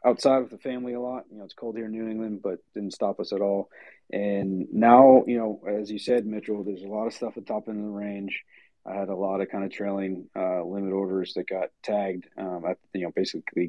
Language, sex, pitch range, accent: English, male, 95-110 Hz, American